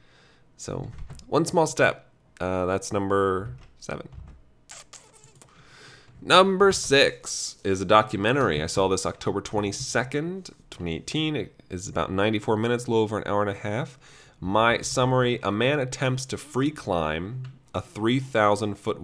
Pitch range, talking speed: 100-135 Hz, 130 wpm